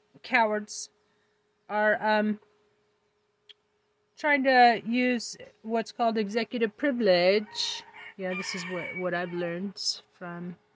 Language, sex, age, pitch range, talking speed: English, female, 30-49, 205-245 Hz, 100 wpm